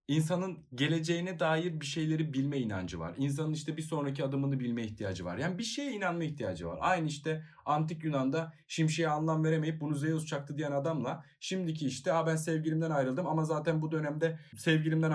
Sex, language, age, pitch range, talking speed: male, Turkish, 30-49, 130-185 Hz, 175 wpm